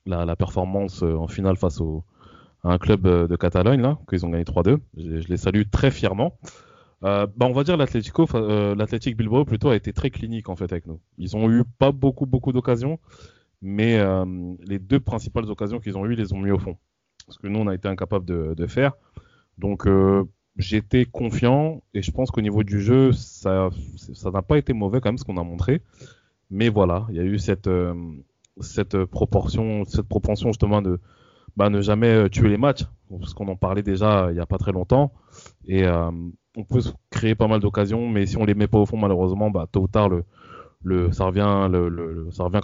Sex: male